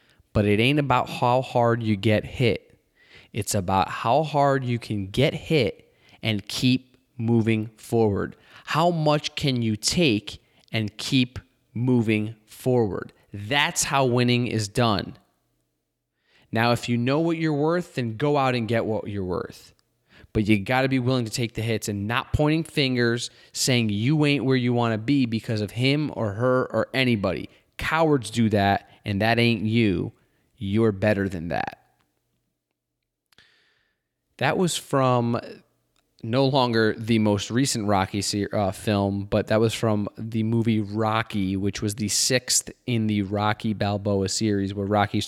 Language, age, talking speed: English, 20-39, 160 wpm